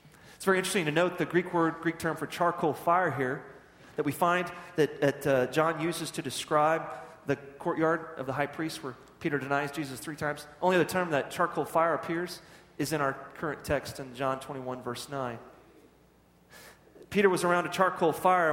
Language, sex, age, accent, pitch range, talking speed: English, male, 30-49, American, 145-185 Hz, 190 wpm